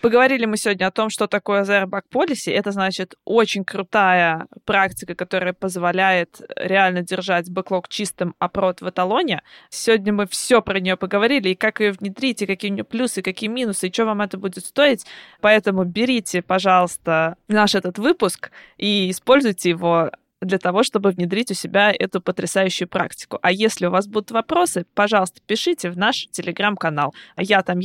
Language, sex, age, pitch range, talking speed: Russian, female, 20-39, 185-220 Hz, 165 wpm